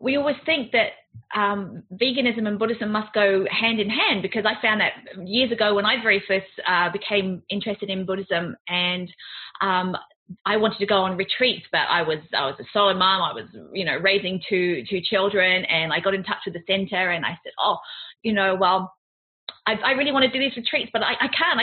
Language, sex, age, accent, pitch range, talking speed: English, female, 30-49, British, 195-255 Hz, 220 wpm